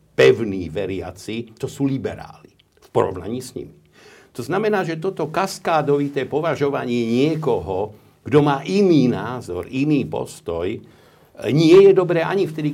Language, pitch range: Slovak, 105-145 Hz